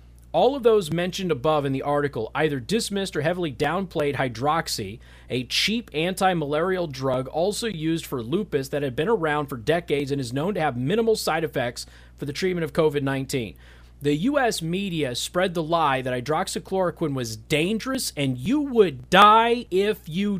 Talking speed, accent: 170 wpm, American